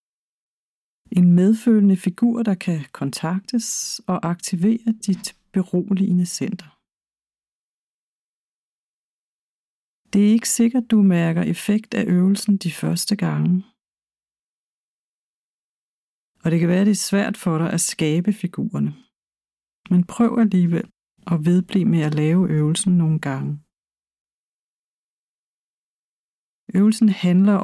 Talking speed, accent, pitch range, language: 100 wpm, native, 170-215 Hz, Danish